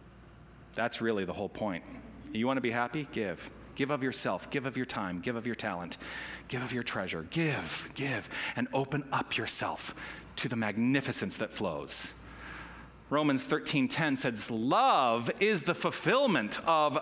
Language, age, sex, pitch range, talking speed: English, 40-59, male, 125-180 Hz, 160 wpm